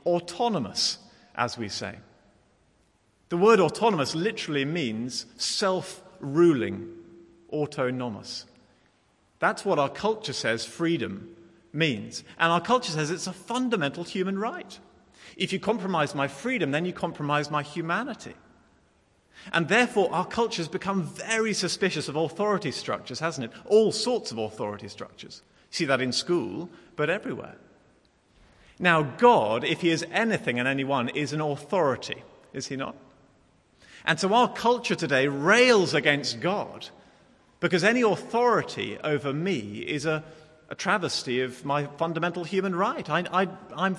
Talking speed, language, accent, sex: 135 wpm, English, British, male